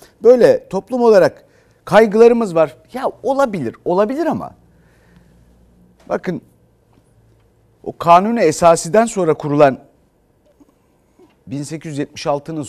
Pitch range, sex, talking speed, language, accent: 125-180 Hz, male, 75 wpm, Turkish, native